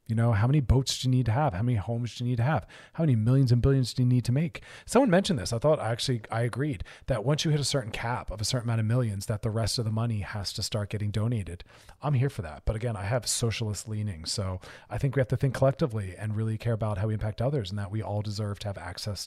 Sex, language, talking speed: male, English, 295 wpm